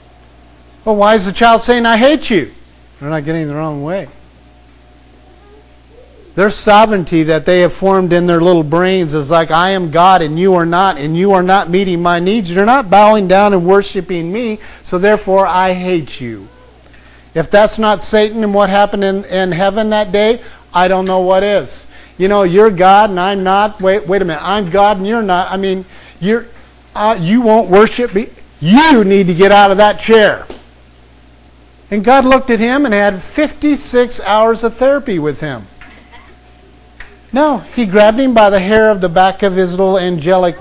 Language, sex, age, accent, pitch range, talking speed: English, male, 50-69, American, 160-215 Hz, 190 wpm